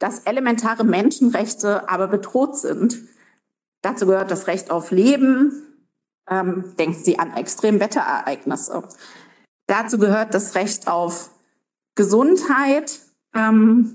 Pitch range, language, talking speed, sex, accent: 195-240 Hz, German, 105 wpm, female, German